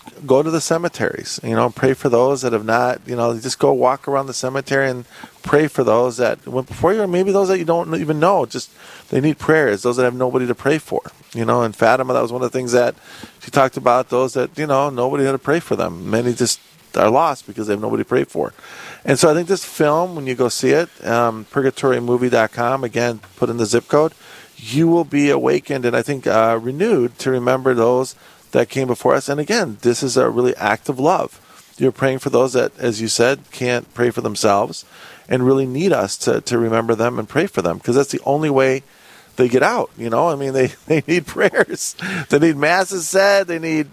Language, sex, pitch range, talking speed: English, male, 120-150 Hz, 235 wpm